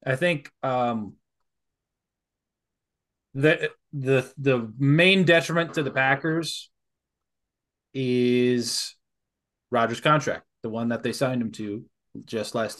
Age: 20-39